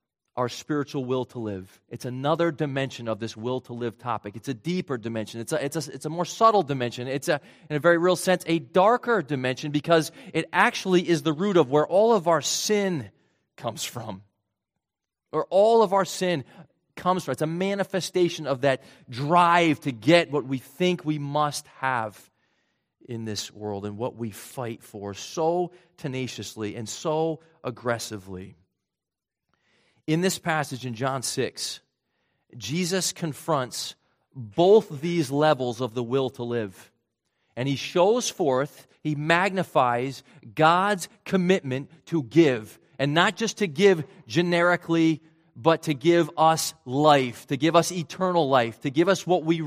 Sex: male